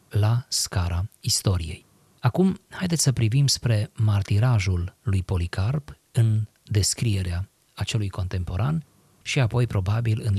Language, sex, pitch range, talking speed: Romanian, male, 100-140 Hz, 110 wpm